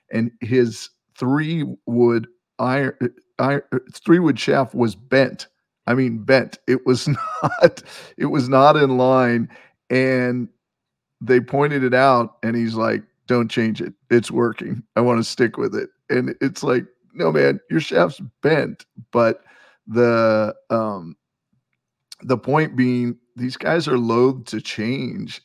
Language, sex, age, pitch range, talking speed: English, male, 40-59, 115-130 Hz, 145 wpm